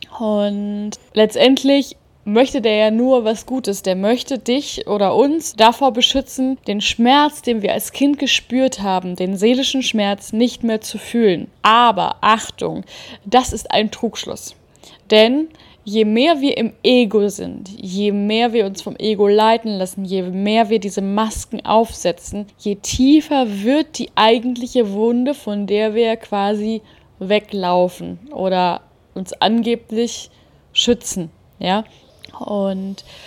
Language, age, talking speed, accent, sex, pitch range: German, 10-29, 135 wpm, German, female, 205-255 Hz